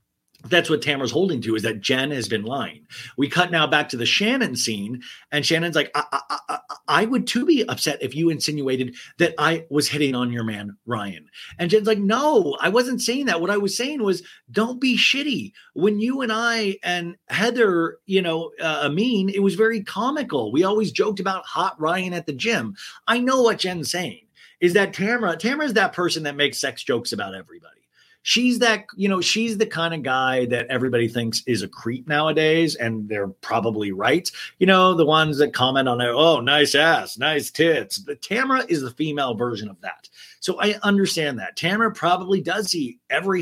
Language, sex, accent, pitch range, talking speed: English, male, American, 145-220 Hz, 205 wpm